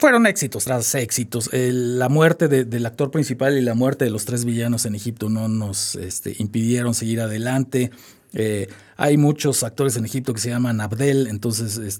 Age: 40-59